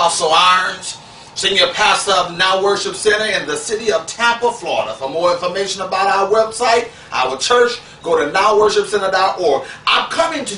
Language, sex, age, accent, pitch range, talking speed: English, male, 30-49, American, 190-260 Hz, 160 wpm